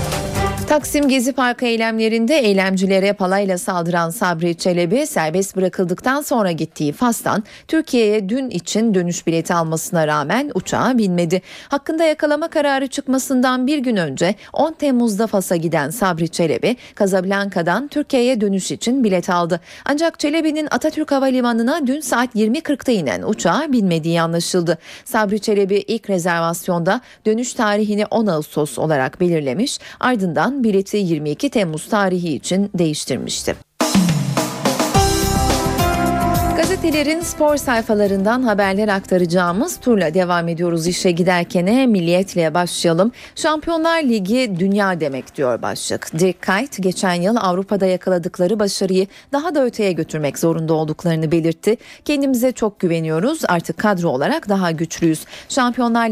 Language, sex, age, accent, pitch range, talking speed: Turkish, female, 40-59, native, 175-245 Hz, 120 wpm